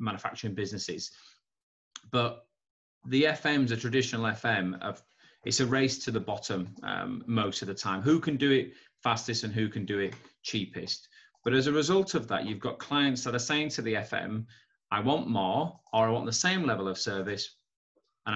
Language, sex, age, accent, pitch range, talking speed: English, male, 30-49, British, 115-165 Hz, 190 wpm